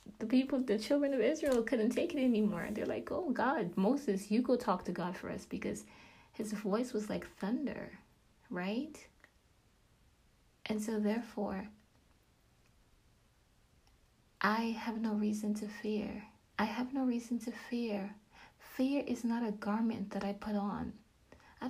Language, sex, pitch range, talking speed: English, female, 205-235 Hz, 150 wpm